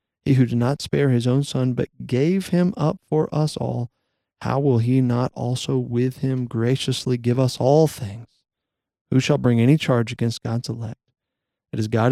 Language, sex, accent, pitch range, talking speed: English, male, American, 110-130 Hz, 190 wpm